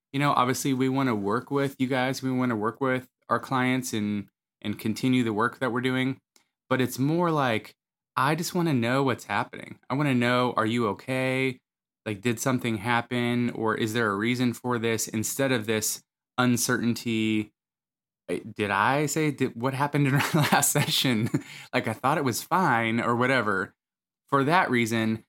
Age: 20-39